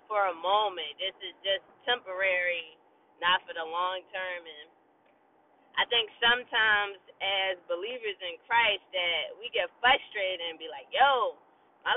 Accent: American